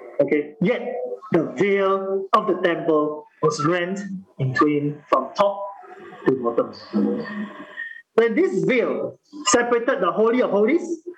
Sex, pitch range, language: male, 185-265 Hz, English